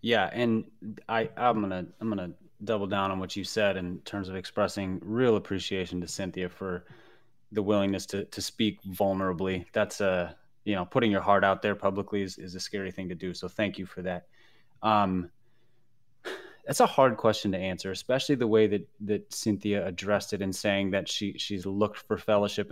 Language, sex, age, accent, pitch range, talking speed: English, male, 20-39, American, 95-110 Hz, 195 wpm